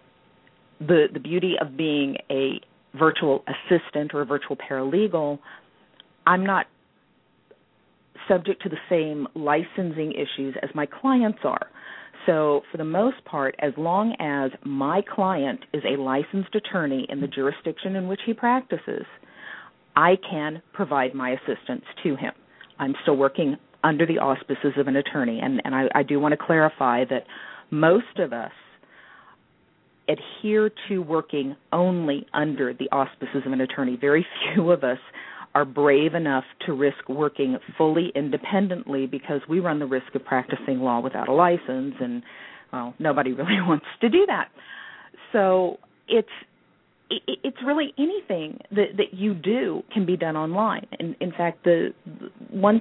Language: English